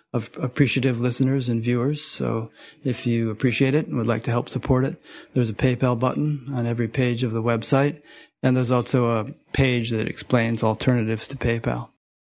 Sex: male